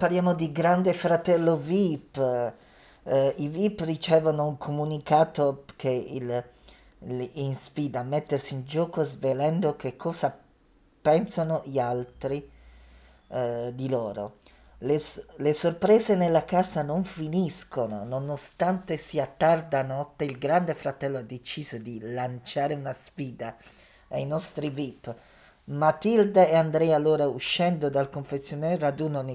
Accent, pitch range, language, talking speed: native, 130-160 Hz, Italian, 120 wpm